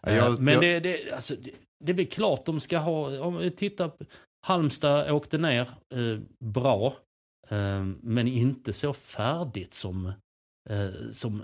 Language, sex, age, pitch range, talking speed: Swedish, male, 30-49, 105-140 Hz, 120 wpm